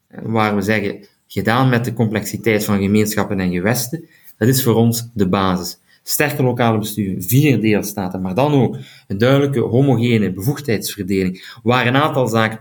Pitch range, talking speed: 105-140 Hz, 155 wpm